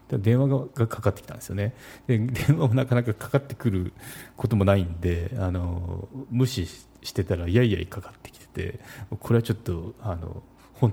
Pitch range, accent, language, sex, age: 95-120 Hz, native, Japanese, male, 40-59